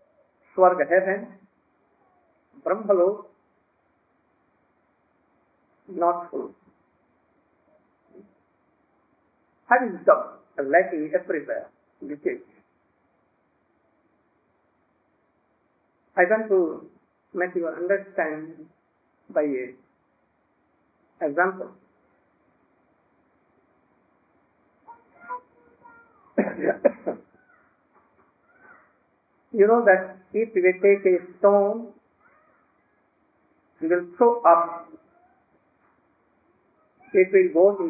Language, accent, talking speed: English, Indian, 60 wpm